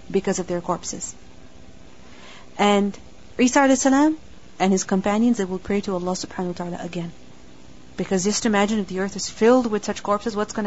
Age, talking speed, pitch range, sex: 30-49, 175 wpm, 180-235 Hz, female